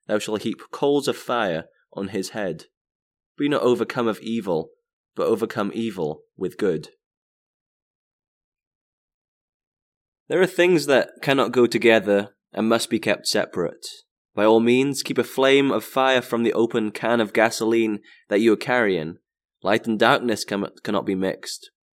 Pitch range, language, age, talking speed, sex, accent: 105-130 Hz, English, 20-39, 150 wpm, male, British